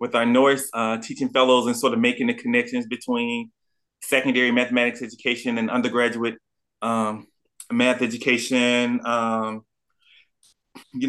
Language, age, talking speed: English, 20-39, 125 wpm